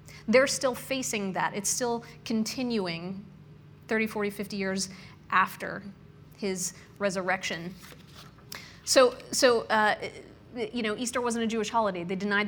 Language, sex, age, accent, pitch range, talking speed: English, female, 30-49, American, 195-230 Hz, 125 wpm